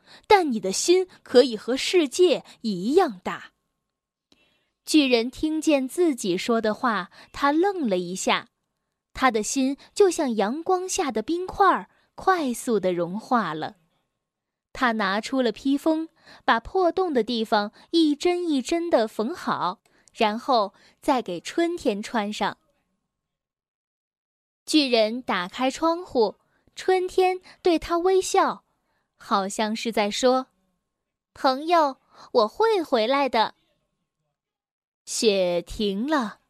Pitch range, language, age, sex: 220-340 Hz, Chinese, 10-29, female